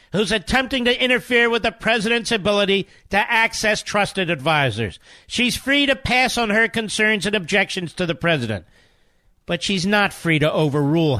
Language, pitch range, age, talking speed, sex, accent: English, 135-200 Hz, 50-69, 160 wpm, male, American